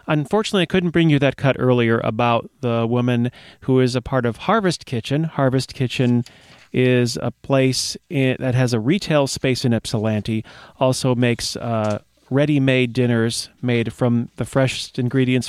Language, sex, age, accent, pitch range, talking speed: English, male, 40-59, American, 115-145 Hz, 155 wpm